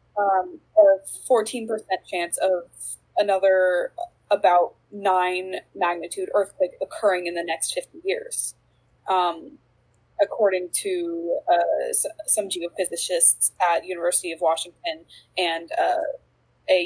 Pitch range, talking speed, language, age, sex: 180-260 Hz, 105 wpm, English, 20-39, female